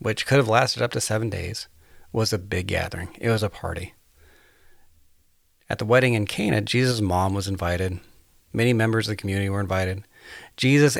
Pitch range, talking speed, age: 90-125 Hz, 180 wpm, 40-59